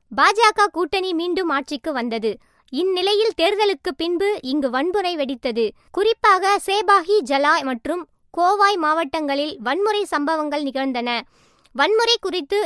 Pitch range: 275-370 Hz